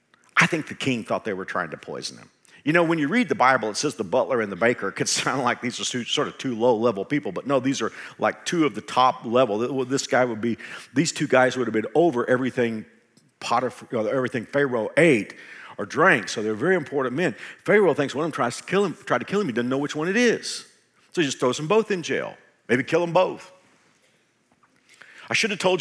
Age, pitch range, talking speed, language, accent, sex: 50-69, 110-140 Hz, 245 wpm, English, American, male